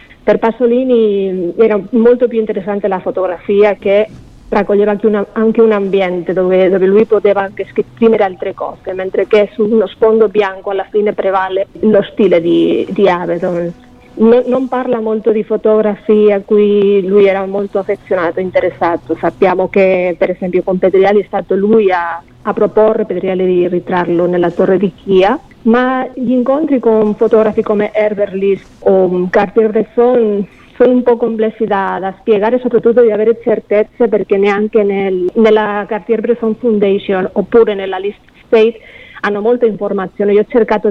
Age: 40-59